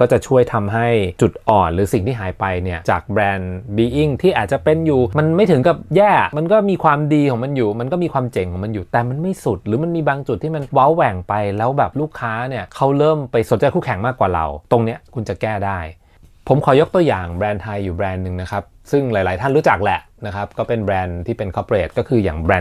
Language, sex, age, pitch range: Thai, male, 20-39, 95-130 Hz